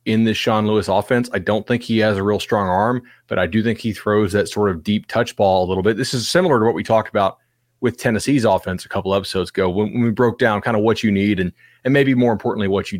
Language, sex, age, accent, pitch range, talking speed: English, male, 30-49, American, 100-125 Hz, 275 wpm